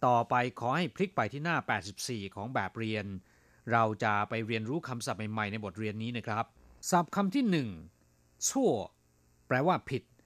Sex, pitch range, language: male, 95-145 Hz, Thai